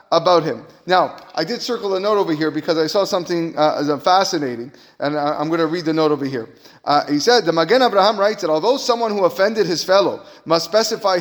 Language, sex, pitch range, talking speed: English, male, 165-225 Hz, 225 wpm